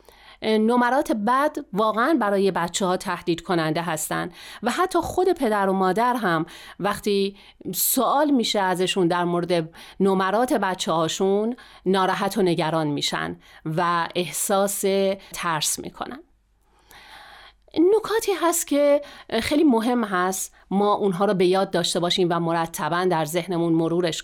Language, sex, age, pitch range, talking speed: Persian, female, 40-59, 185-255 Hz, 125 wpm